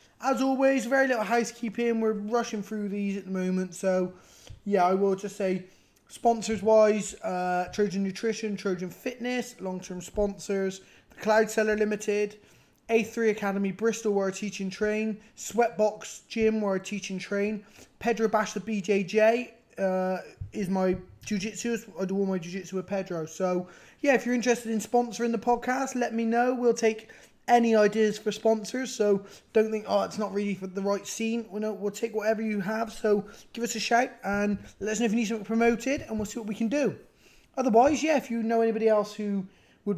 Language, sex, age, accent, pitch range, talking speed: English, male, 20-39, British, 190-225 Hz, 195 wpm